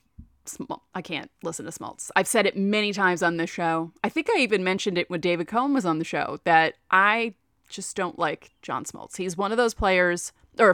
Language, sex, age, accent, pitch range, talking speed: English, female, 30-49, American, 165-240 Hz, 220 wpm